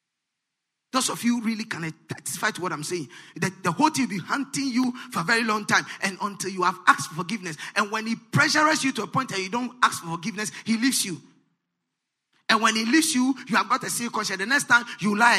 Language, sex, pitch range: English, male, 185-240 Hz